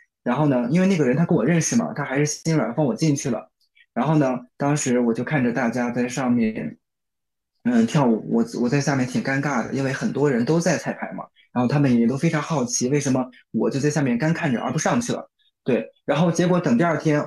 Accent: native